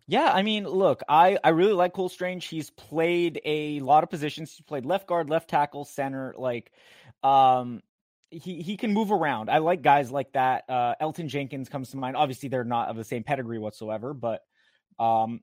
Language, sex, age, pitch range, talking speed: English, male, 20-39, 115-150 Hz, 200 wpm